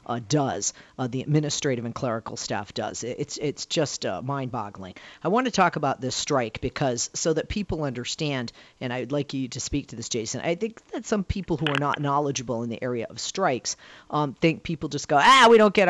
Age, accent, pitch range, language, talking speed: 40-59, American, 130-170 Hz, English, 220 wpm